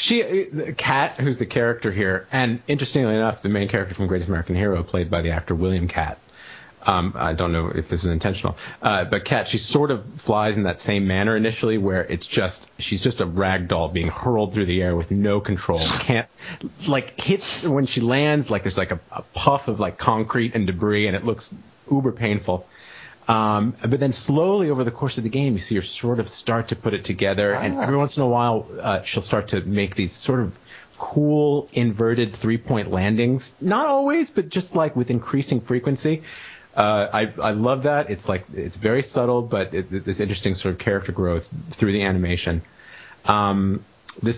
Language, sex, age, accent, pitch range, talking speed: English, male, 30-49, American, 95-125 Hz, 200 wpm